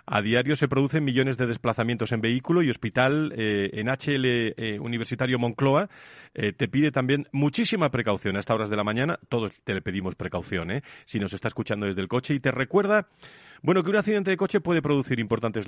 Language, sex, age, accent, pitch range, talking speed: Spanish, male, 40-59, Spanish, 105-140 Hz, 205 wpm